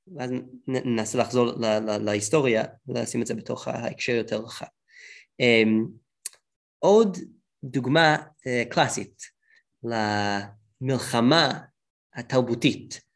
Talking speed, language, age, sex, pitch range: 85 wpm, Hebrew, 20-39, male, 115-180 Hz